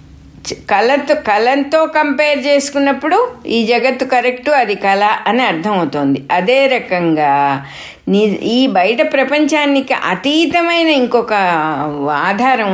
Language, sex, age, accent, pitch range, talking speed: English, female, 60-79, Indian, 170-255 Hz, 95 wpm